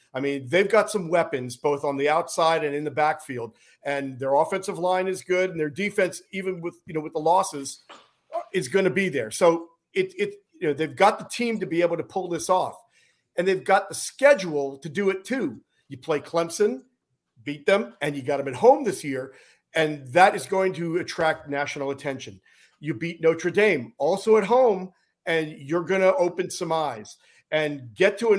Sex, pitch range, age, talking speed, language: male, 145-190 Hz, 50-69, 210 wpm, English